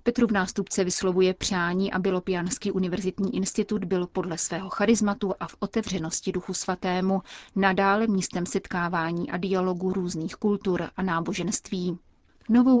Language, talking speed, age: Czech, 130 wpm, 30-49